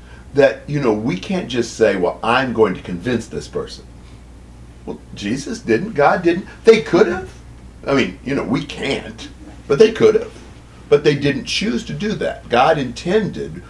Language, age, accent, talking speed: English, 50-69, American, 180 wpm